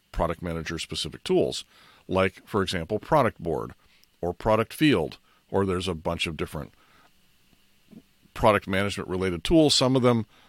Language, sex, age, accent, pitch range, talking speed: English, male, 50-69, American, 85-115 Hz, 145 wpm